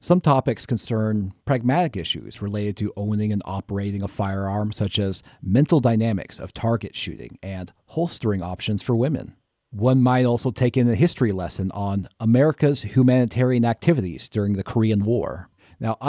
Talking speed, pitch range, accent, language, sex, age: 155 wpm, 100-130 Hz, American, English, male, 40-59